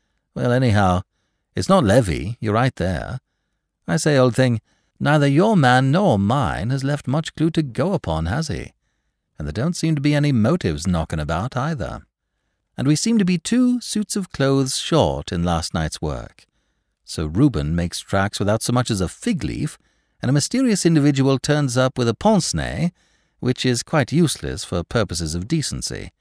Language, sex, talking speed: English, male, 180 wpm